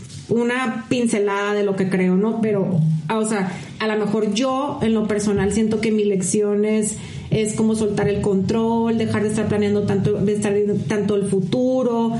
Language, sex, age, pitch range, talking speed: Spanish, female, 40-59, 210-240 Hz, 180 wpm